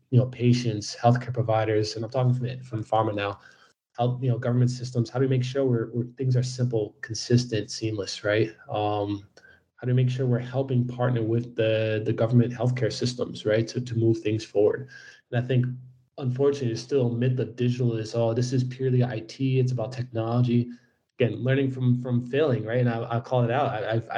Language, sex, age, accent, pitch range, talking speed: English, male, 20-39, American, 115-125 Hz, 205 wpm